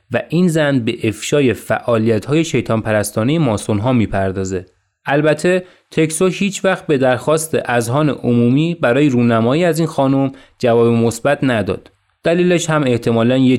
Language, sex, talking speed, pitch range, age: Persian, male, 135 wpm, 115-150 Hz, 30-49